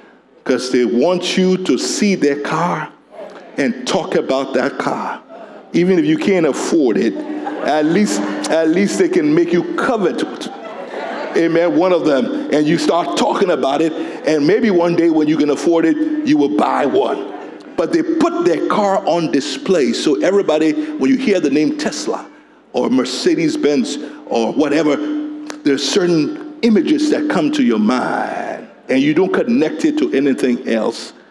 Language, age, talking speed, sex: English, 50-69, 165 wpm, male